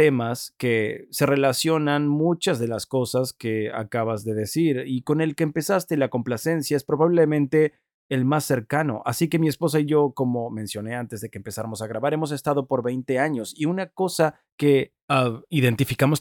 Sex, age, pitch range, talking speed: male, 30-49, 120-160 Hz, 180 wpm